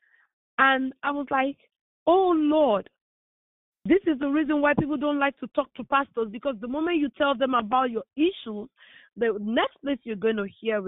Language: English